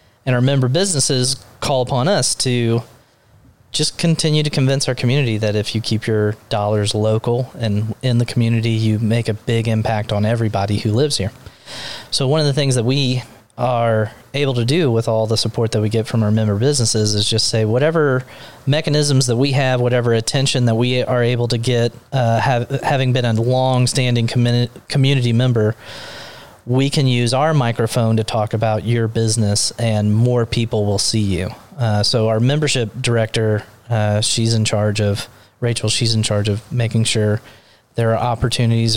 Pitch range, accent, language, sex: 110-125 Hz, American, English, male